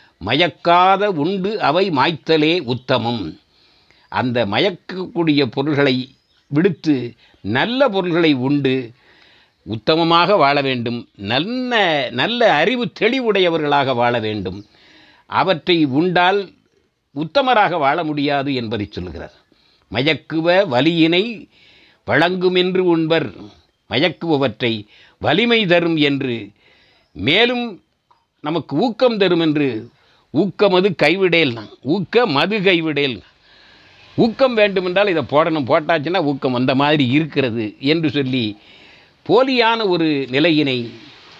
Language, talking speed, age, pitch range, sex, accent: Tamil, 90 wpm, 60-79, 130-180 Hz, male, native